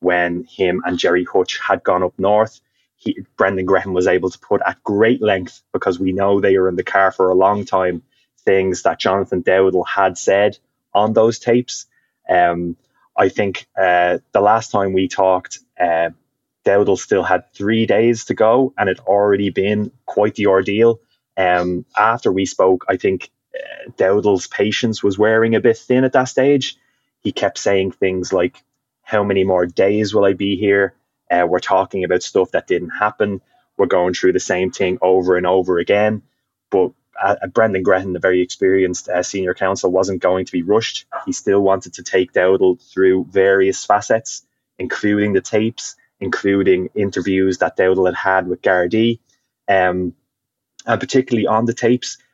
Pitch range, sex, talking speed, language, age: 95-110 Hz, male, 175 wpm, English, 20-39